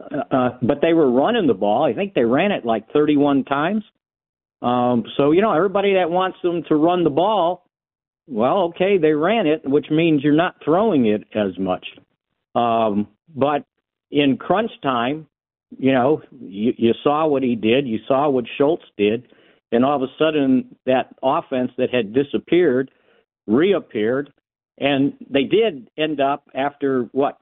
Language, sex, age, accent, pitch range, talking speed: English, male, 50-69, American, 120-155 Hz, 165 wpm